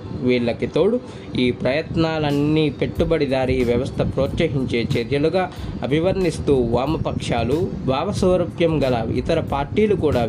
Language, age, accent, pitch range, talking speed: Telugu, 20-39, native, 125-180 Hz, 85 wpm